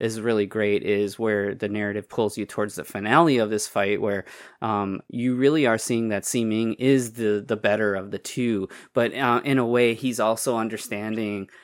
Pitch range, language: 105-125 Hz, English